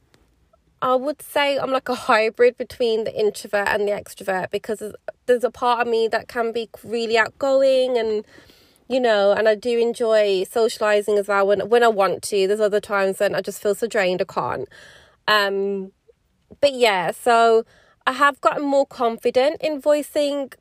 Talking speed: 180 wpm